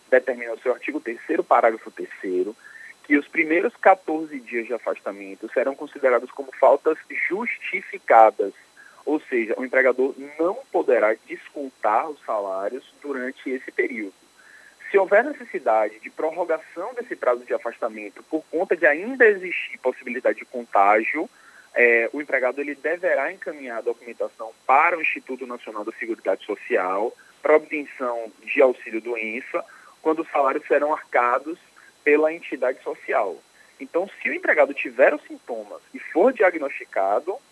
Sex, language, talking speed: male, Portuguese, 135 wpm